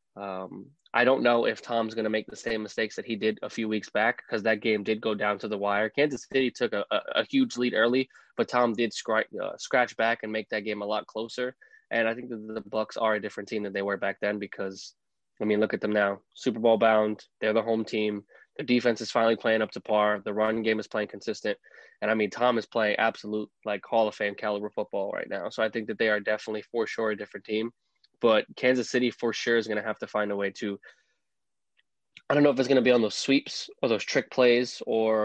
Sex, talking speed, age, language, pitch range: male, 255 wpm, 20-39, English, 105-120 Hz